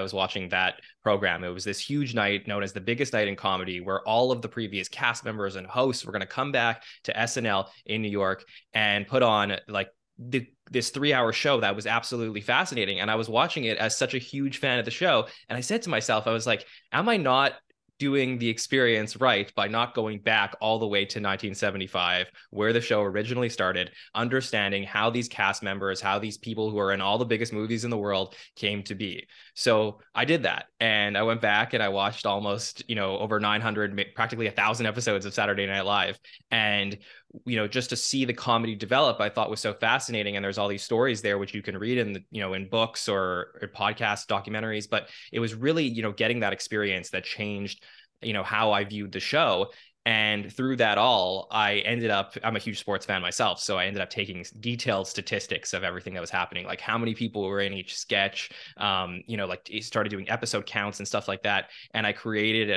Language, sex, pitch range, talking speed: English, male, 100-115 Hz, 225 wpm